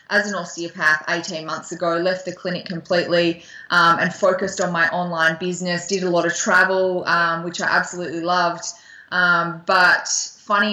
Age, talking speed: 20-39, 170 wpm